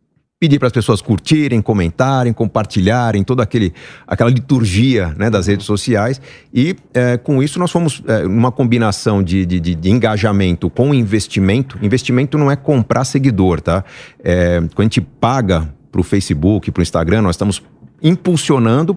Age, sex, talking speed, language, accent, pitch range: 50-69, male, 150 wpm, Portuguese, Brazilian, 100-130 Hz